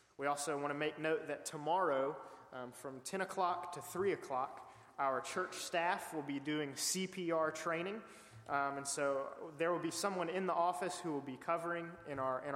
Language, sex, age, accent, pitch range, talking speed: English, male, 20-39, American, 140-175 Hz, 190 wpm